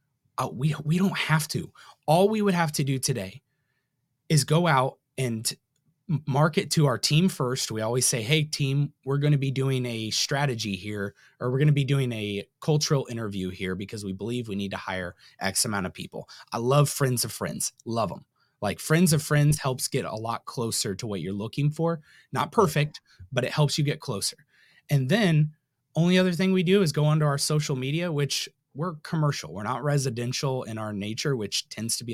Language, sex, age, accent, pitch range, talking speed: English, male, 20-39, American, 120-155 Hz, 205 wpm